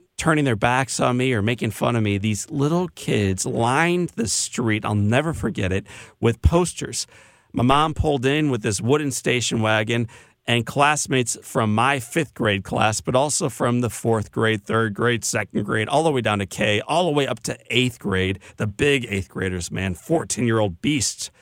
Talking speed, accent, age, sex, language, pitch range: 190 wpm, American, 40-59, male, English, 100-125 Hz